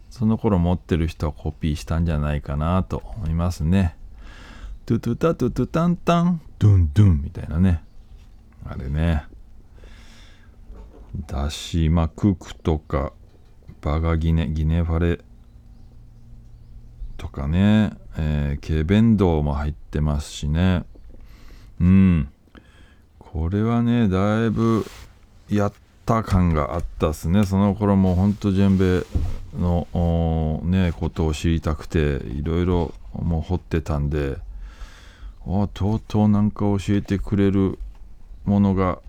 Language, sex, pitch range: Japanese, male, 80-100 Hz